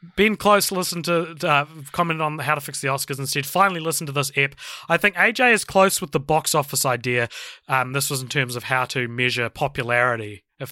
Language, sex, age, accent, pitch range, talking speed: English, male, 20-39, Australian, 130-170 Hz, 220 wpm